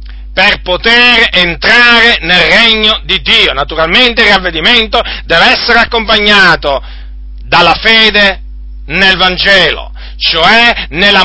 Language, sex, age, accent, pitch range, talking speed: Italian, male, 50-69, native, 130-220 Hz, 100 wpm